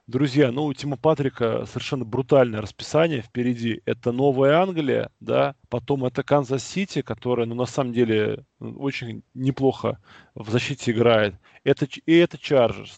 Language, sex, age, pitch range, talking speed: Russian, male, 20-39, 125-150 Hz, 140 wpm